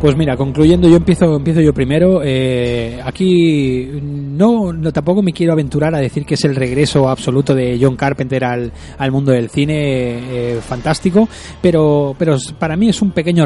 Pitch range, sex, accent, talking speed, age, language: 130-155 Hz, male, Spanish, 180 wpm, 20-39, Spanish